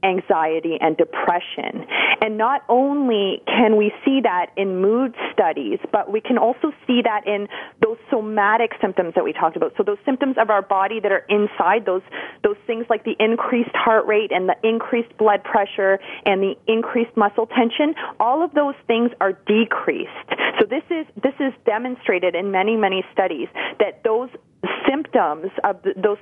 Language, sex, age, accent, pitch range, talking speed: English, female, 30-49, American, 195-255 Hz, 170 wpm